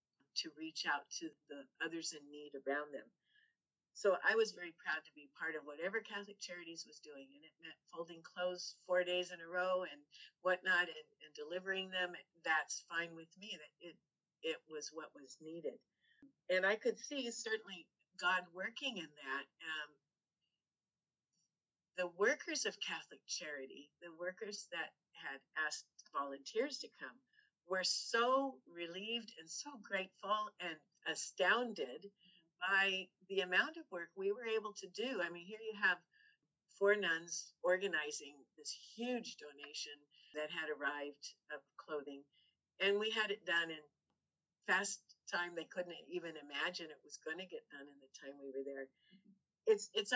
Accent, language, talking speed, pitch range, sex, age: American, English, 160 wpm, 155-205 Hz, female, 50-69